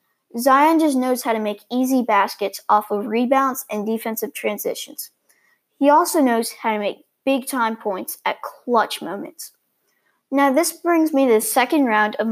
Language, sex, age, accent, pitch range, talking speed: English, female, 10-29, American, 215-275 Hz, 165 wpm